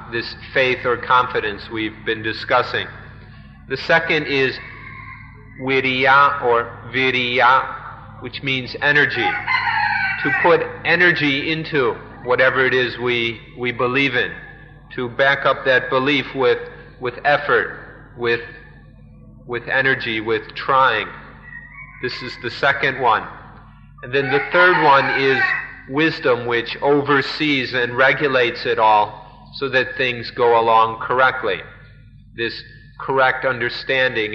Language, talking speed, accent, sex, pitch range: English, 115 wpm, American, male, 120-145 Hz